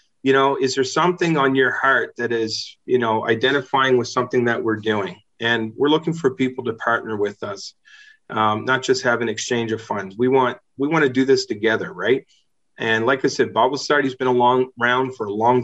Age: 30-49